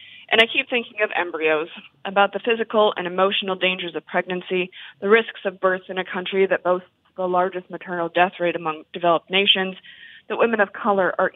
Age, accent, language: 20-39, American, English